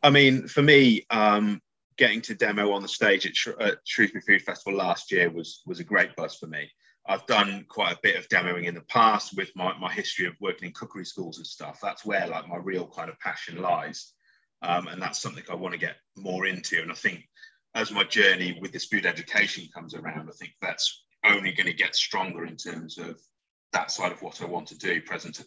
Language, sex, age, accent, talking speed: English, male, 30-49, British, 230 wpm